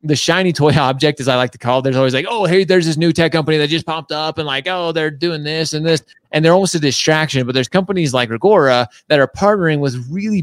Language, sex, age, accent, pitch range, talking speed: English, male, 30-49, American, 125-160 Hz, 270 wpm